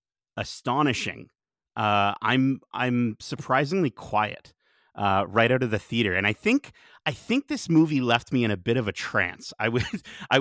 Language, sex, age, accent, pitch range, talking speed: English, male, 30-49, American, 100-125 Hz, 175 wpm